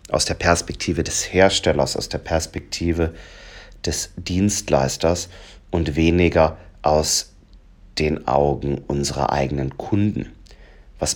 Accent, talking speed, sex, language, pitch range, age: German, 100 wpm, male, German, 75-95 Hz, 40-59